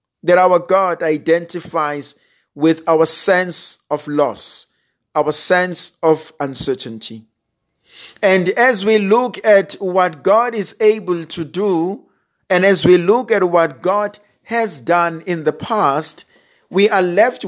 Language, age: English, 50-69